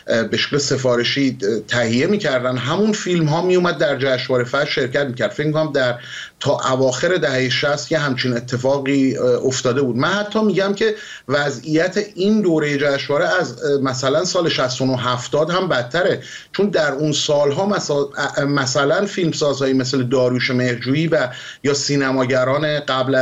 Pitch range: 130-165 Hz